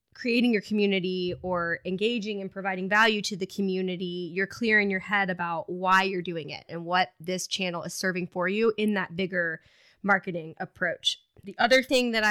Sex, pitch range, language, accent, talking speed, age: female, 175-215 Hz, English, American, 185 wpm, 20-39